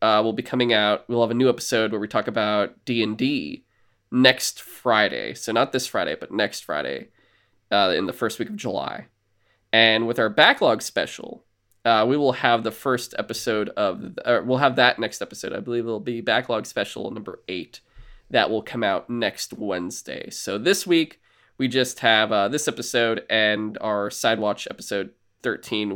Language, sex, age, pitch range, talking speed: English, male, 20-39, 105-125 Hz, 185 wpm